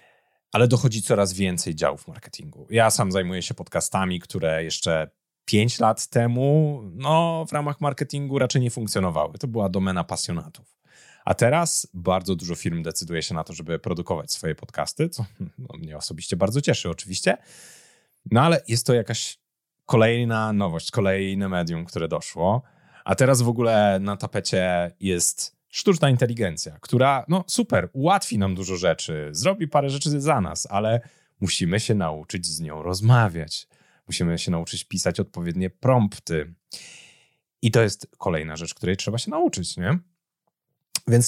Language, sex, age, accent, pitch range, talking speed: Polish, male, 30-49, native, 95-140 Hz, 150 wpm